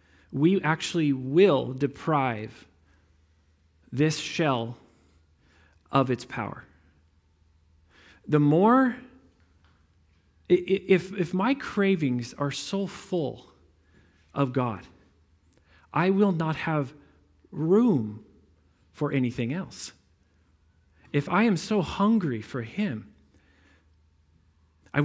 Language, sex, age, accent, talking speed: English, male, 40-59, American, 85 wpm